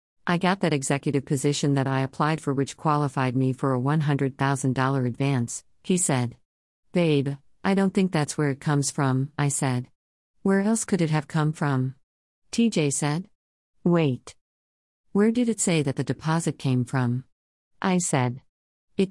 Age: 50-69